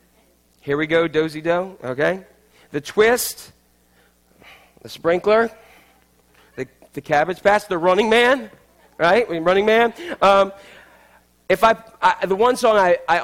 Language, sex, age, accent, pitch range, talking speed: English, male, 30-49, American, 160-205 Hz, 140 wpm